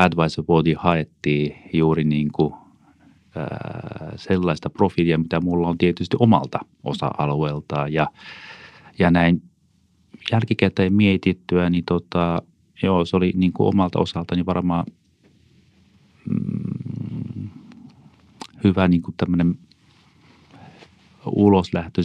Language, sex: Finnish, male